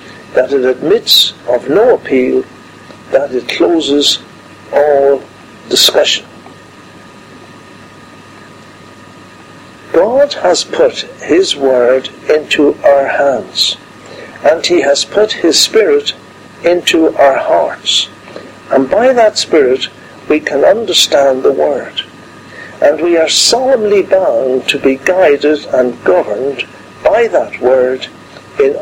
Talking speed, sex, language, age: 105 wpm, male, English, 60-79